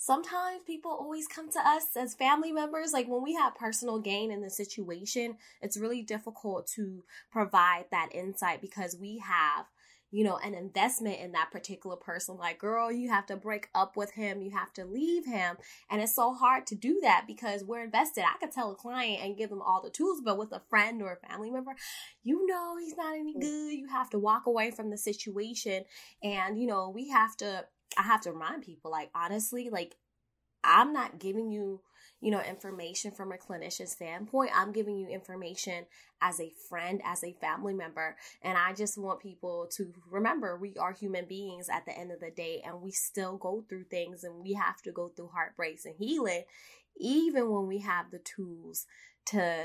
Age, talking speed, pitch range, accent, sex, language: 10-29, 205 wpm, 185-245 Hz, American, female, English